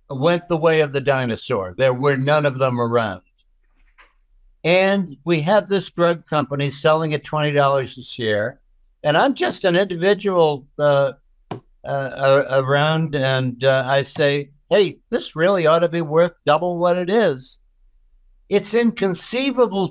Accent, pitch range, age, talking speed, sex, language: American, 140-185 Hz, 60-79, 150 wpm, male, English